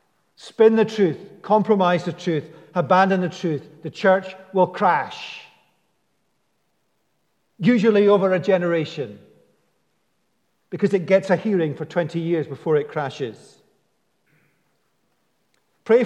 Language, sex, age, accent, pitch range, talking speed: English, male, 50-69, British, 160-195 Hz, 110 wpm